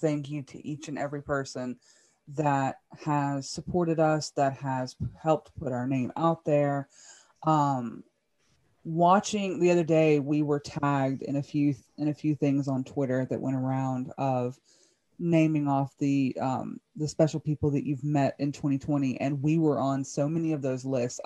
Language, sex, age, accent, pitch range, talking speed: English, female, 20-39, American, 135-155 Hz, 170 wpm